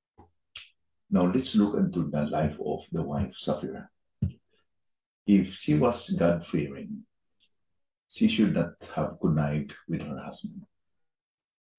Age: 50-69